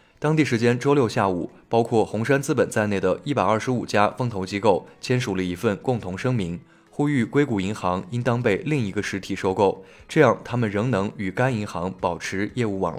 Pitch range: 100-125 Hz